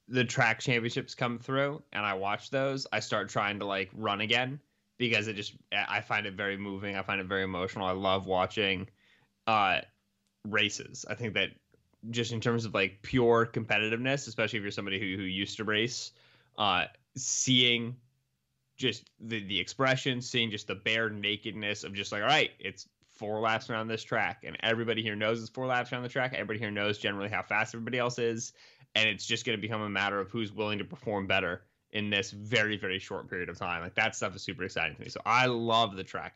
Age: 20-39